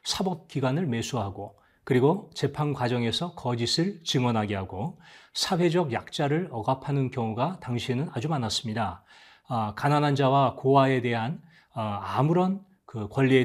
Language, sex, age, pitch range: Korean, male, 30-49, 115-165 Hz